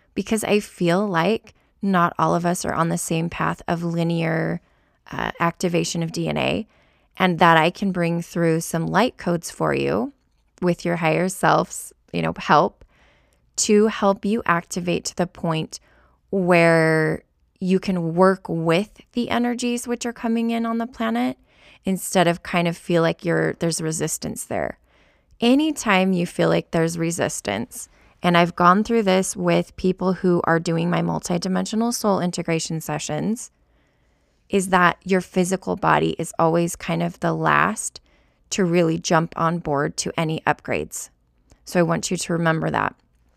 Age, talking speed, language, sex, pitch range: 20-39, 160 wpm, English, female, 165-195 Hz